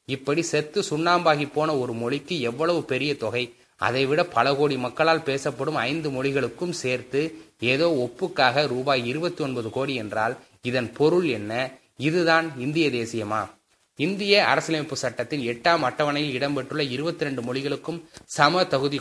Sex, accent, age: male, native, 20-39